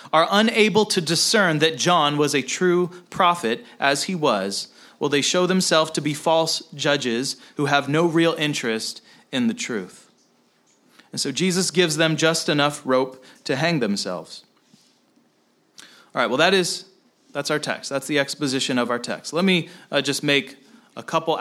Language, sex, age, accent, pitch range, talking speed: English, male, 30-49, American, 145-190 Hz, 170 wpm